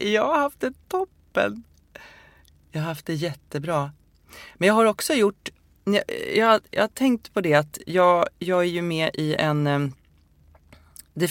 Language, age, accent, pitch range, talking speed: English, 30-49, Swedish, 125-175 Hz, 165 wpm